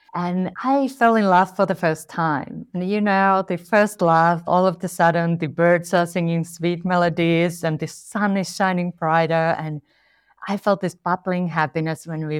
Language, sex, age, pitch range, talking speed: English, female, 30-49, 160-195 Hz, 190 wpm